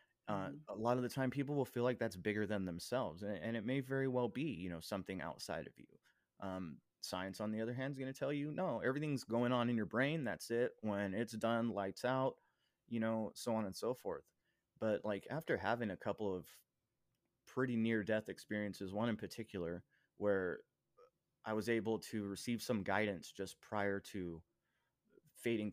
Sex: male